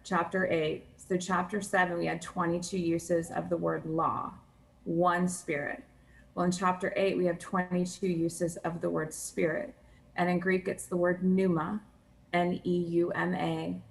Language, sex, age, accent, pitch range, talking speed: English, female, 20-39, American, 160-185 Hz, 150 wpm